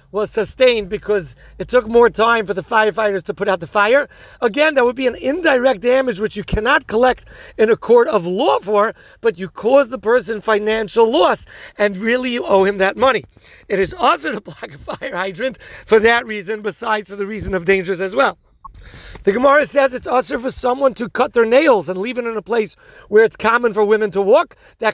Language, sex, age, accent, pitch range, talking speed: English, male, 40-59, American, 210-250 Hz, 215 wpm